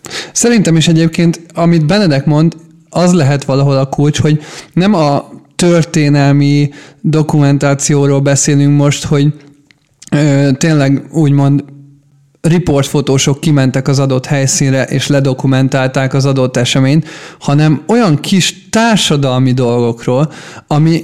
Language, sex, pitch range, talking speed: Hungarian, male, 140-165 Hz, 105 wpm